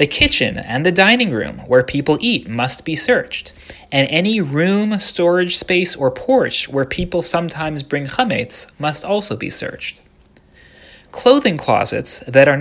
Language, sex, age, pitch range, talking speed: English, male, 30-49, 125-175 Hz, 150 wpm